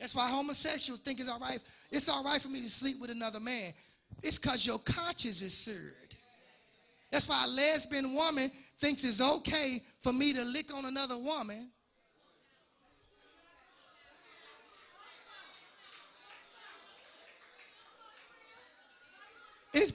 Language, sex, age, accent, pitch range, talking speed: English, male, 20-39, American, 245-330 Hz, 115 wpm